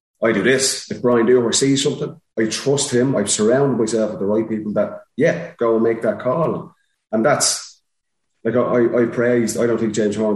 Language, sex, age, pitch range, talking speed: English, male, 30-49, 105-120 Hz, 210 wpm